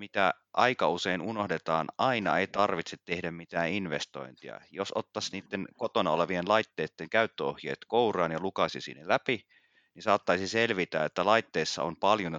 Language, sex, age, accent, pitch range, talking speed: Finnish, male, 30-49, native, 85-100 Hz, 140 wpm